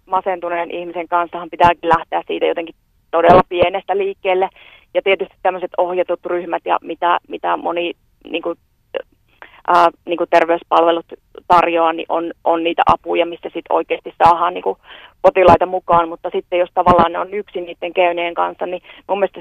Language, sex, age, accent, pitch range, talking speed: Finnish, female, 30-49, native, 170-195 Hz, 155 wpm